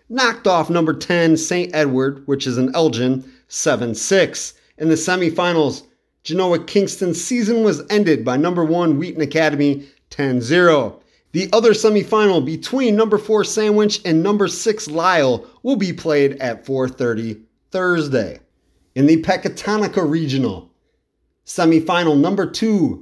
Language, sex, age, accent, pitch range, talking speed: English, male, 30-49, American, 145-185 Hz, 130 wpm